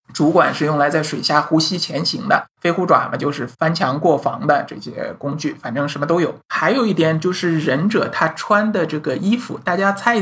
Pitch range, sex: 150-195 Hz, male